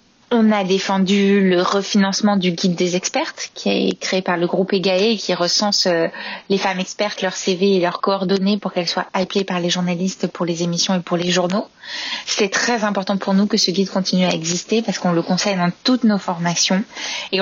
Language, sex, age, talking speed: French, female, 20-39, 205 wpm